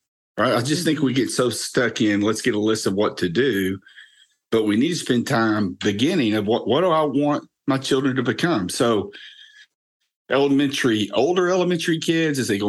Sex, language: male, English